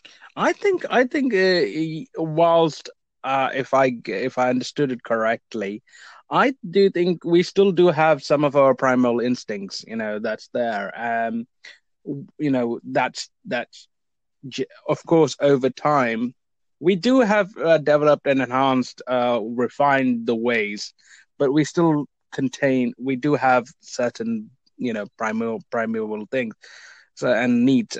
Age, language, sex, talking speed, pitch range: 20-39, English, male, 145 wpm, 120-160 Hz